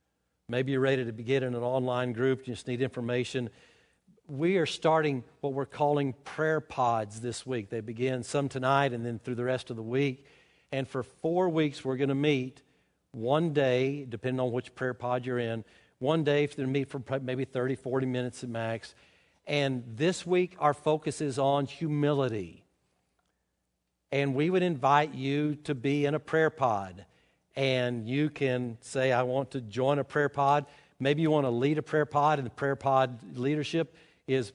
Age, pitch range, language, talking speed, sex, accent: 50-69, 125-145 Hz, English, 190 wpm, male, American